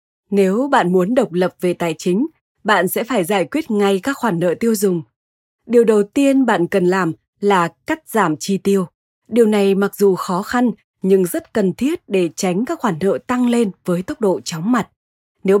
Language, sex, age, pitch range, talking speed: Vietnamese, female, 20-39, 185-240 Hz, 205 wpm